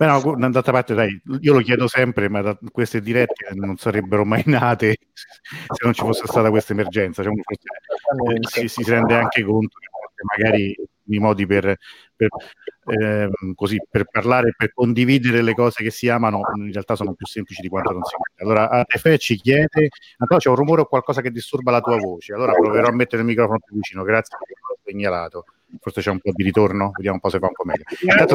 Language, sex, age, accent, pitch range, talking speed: Italian, male, 50-69, native, 100-125 Hz, 210 wpm